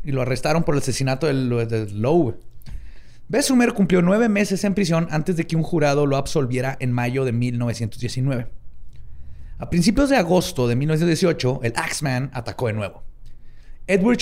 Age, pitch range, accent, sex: 30-49, 125-165 Hz, Mexican, male